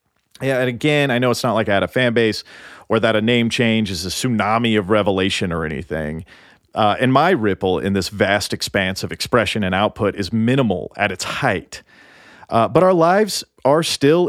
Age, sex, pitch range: 40-59, male, 105-140 Hz